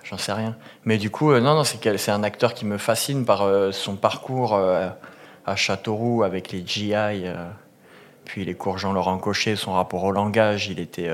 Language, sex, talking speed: French, male, 210 wpm